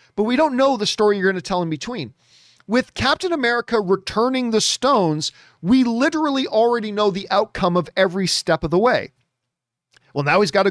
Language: English